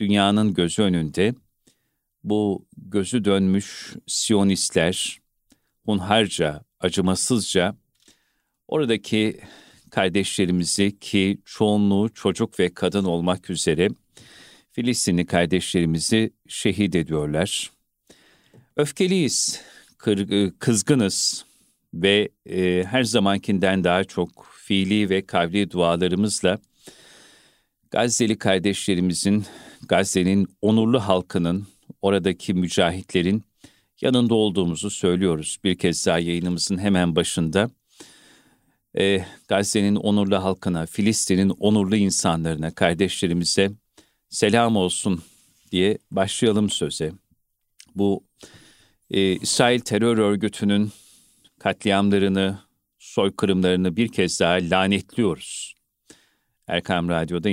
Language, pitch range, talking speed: Turkish, 90-105 Hz, 80 wpm